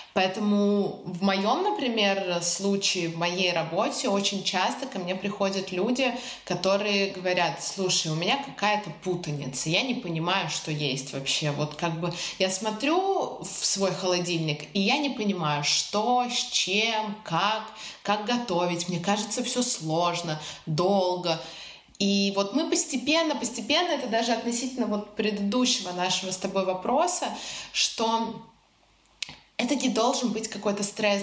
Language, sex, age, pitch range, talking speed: Russian, female, 20-39, 175-220 Hz, 135 wpm